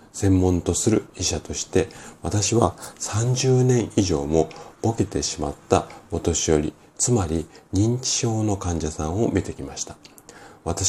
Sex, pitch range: male, 80-115 Hz